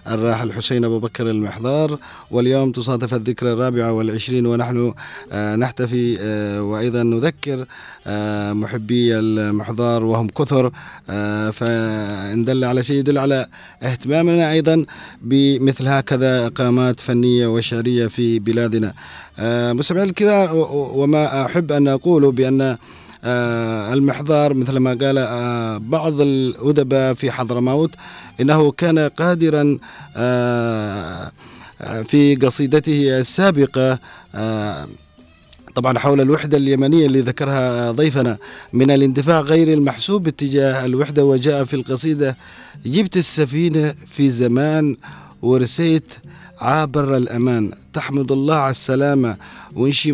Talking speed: 100 wpm